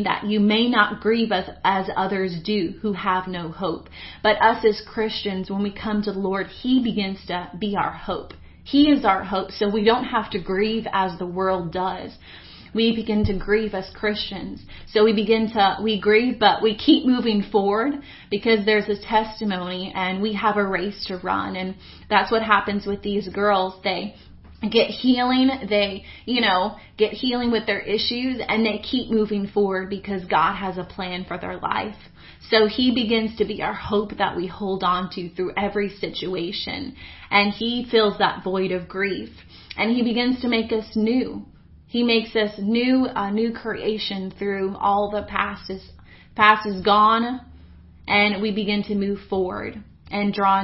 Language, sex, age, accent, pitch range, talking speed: English, female, 30-49, American, 190-220 Hz, 180 wpm